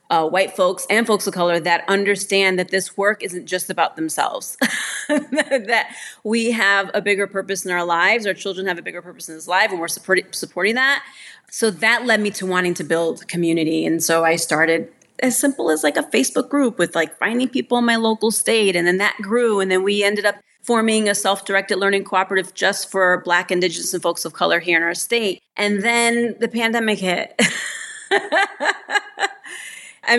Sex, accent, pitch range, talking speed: female, American, 180-230 Hz, 195 wpm